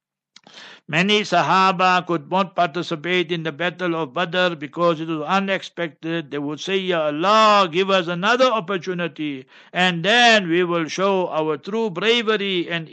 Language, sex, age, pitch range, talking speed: English, male, 60-79, 155-195 Hz, 150 wpm